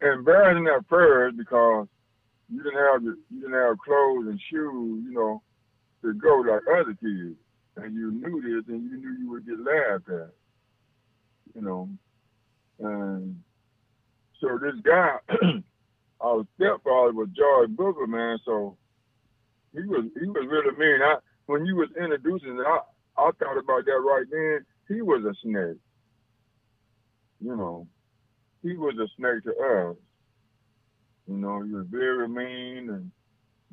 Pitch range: 110-125 Hz